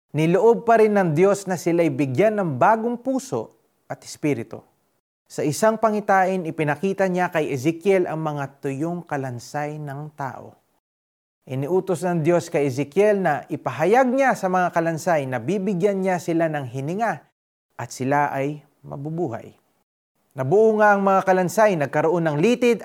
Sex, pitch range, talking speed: male, 145-205 Hz, 140 wpm